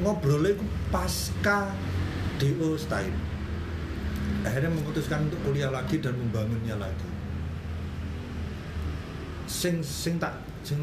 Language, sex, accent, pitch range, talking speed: Indonesian, male, native, 85-140 Hz, 95 wpm